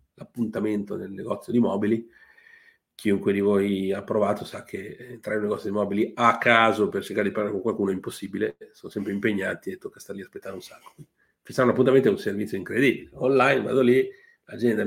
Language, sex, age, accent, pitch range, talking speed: Italian, male, 40-59, native, 110-135 Hz, 200 wpm